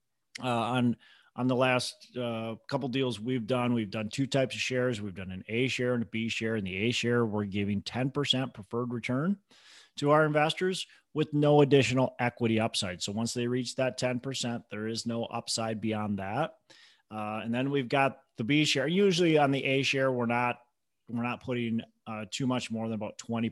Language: English